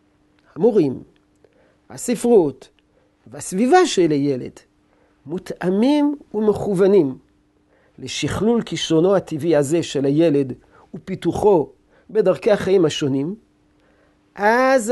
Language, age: Hebrew, 50-69